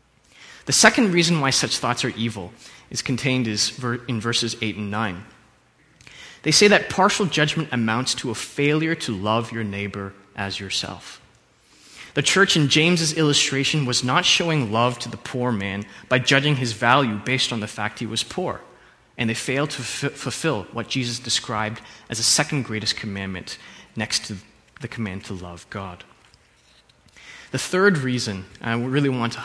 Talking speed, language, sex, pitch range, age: 165 wpm, English, male, 110-140 Hz, 20-39